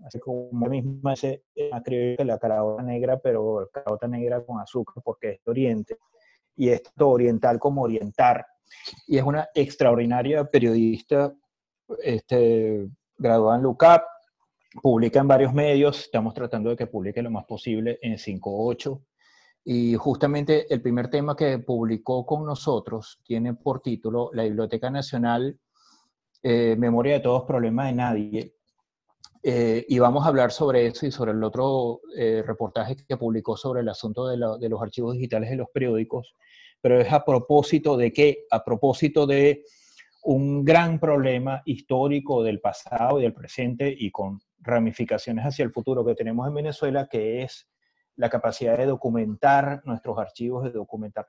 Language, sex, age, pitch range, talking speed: Spanish, male, 30-49, 115-140 Hz, 155 wpm